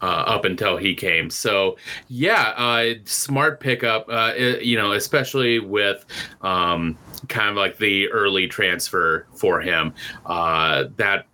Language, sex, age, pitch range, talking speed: English, male, 30-49, 100-130 Hz, 140 wpm